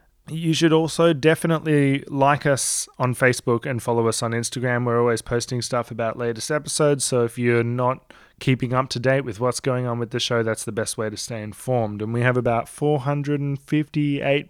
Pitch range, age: 115-140 Hz, 20-39